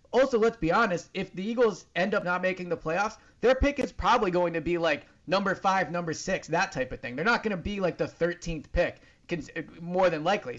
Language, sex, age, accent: English, male, 30-49, American